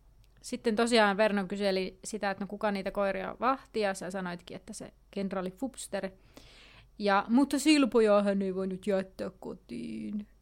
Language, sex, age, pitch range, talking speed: Finnish, female, 30-49, 195-230 Hz, 155 wpm